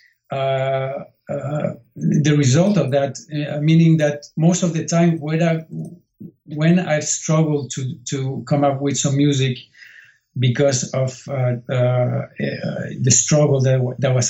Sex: male